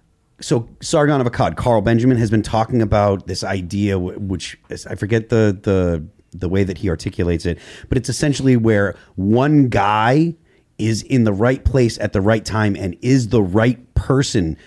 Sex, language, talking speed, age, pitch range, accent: male, English, 180 wpm, 30-49, 100-130 Hz, American